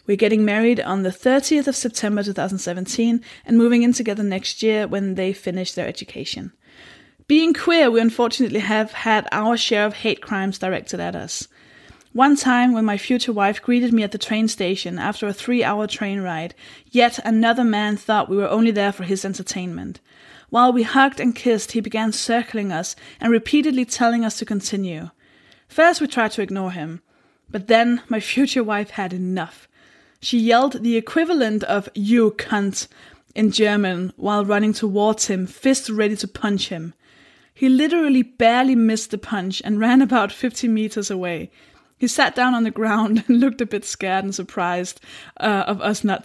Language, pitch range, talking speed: English, 195-240 Hz, 180 wpm